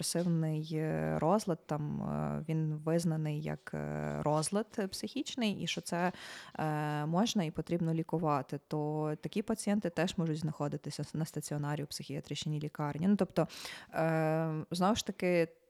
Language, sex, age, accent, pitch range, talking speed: Ukrainian, female, 20-39, native, 150-185 Hz, 125 wpm